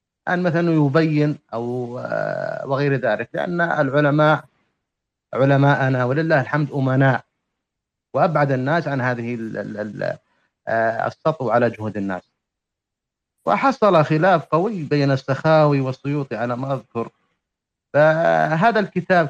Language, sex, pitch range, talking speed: English, male, 130-165 Hz, 95 wpm